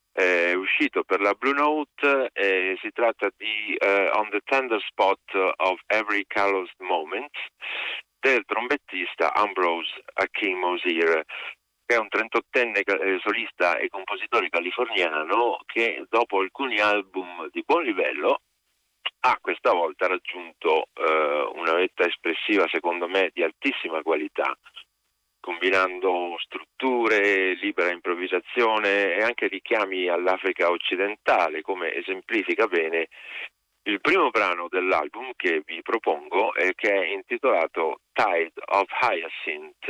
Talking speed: 120 wpm